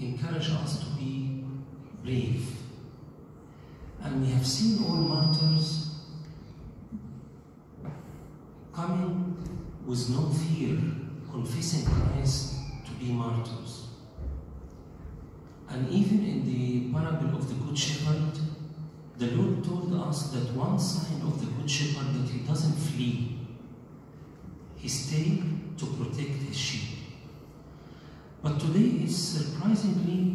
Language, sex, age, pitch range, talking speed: English, male, 50-69, 130-165 Hz, 105 wpm